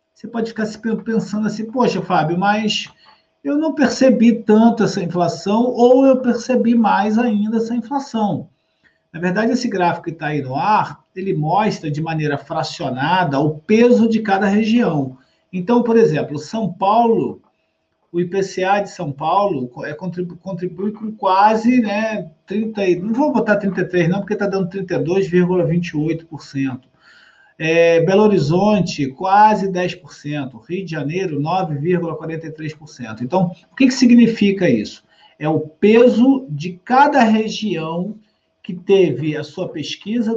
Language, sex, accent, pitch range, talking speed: Portuguese, male, Brazilian, 165-225 Hz, 135 wpm